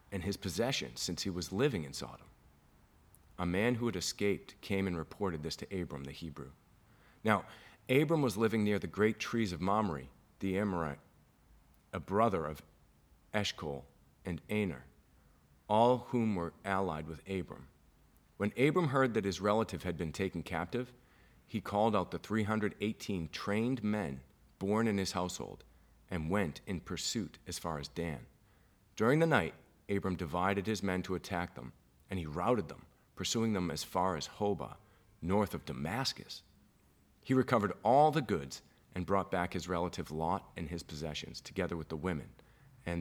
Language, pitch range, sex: English, 75-105 Hz, male